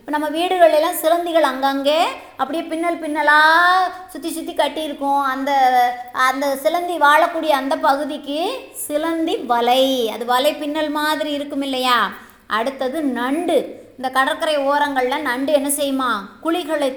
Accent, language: native, Tamil